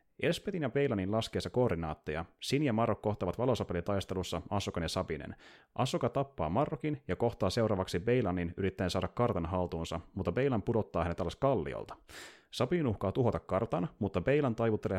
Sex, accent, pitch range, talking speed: male, native, 90-115 Hz, 150 wpm